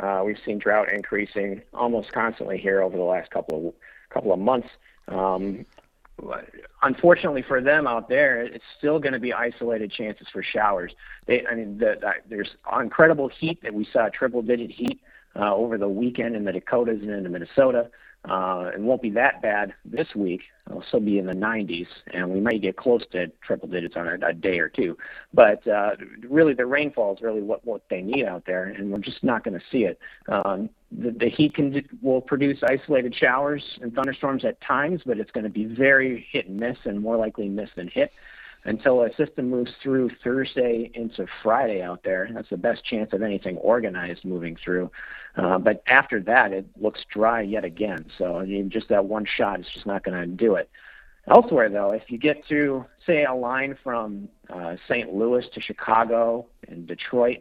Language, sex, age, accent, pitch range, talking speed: English, male, 50-69, American, 100-130 Hz, 200 wpm